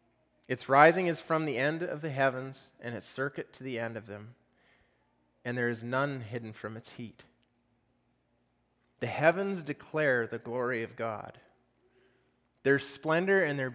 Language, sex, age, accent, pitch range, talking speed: English, male, 20-39, American, 115-145 Hz, 155 wpm